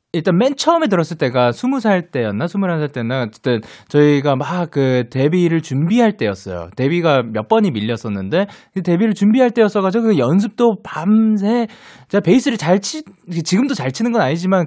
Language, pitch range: Korean, 140-225 Hz